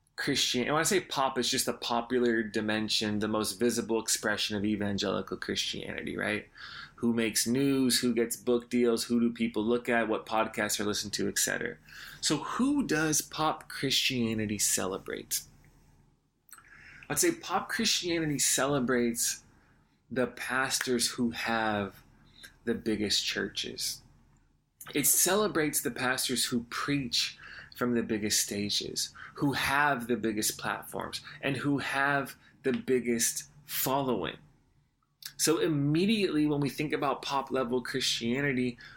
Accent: American